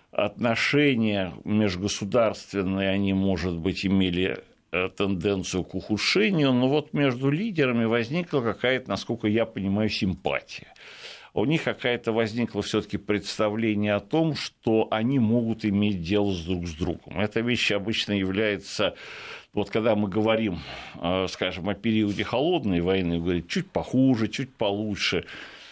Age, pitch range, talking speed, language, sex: 60-79, 95-120 Hz, 125 wpm, Russian, male